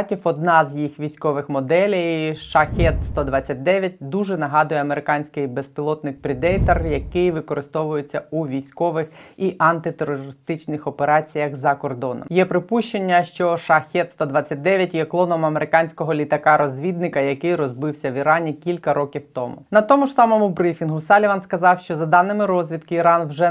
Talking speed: 120 wpm